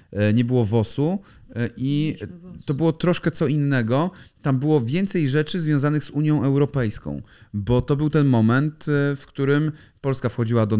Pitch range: 110-140 Hz